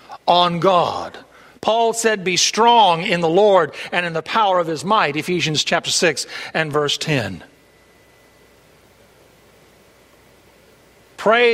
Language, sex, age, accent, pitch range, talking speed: English, male, 50-69, American, 160-215 Hz, 120 wpm